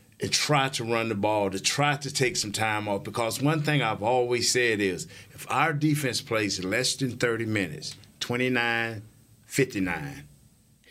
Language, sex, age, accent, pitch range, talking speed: English, male, 50-69, American, 100-135 Hz, 160 wpm